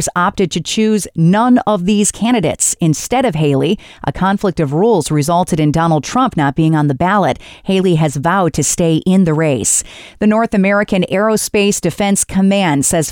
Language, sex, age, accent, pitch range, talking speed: English, female, 40-59, American, 160-210 Hz, 175 wpm